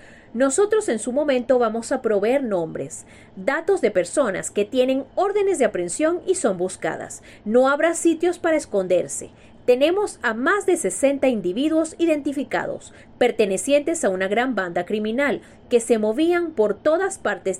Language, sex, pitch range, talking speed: Spanish, female, 200-305 Hz, 145 wpm